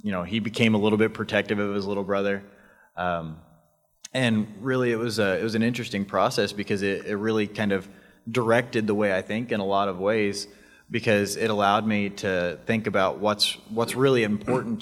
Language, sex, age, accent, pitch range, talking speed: English, male, 20-39, American, 95-110 Hz, 205 wpm